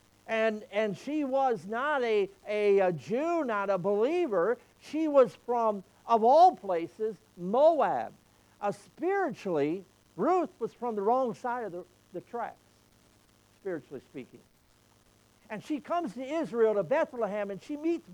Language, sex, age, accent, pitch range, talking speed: English, male, 60-79, American, 155-245 Hz, 140 wpm